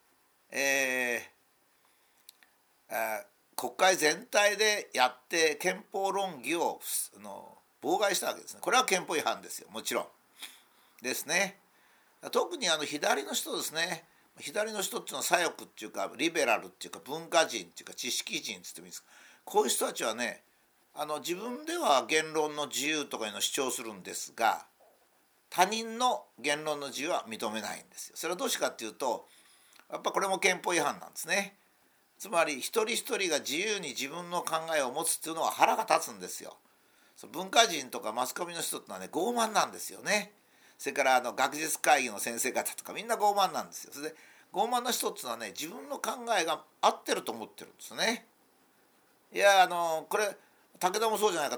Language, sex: Japanese, male